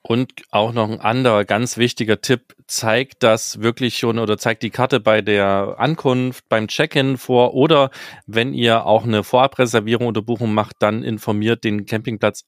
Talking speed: 170 wpm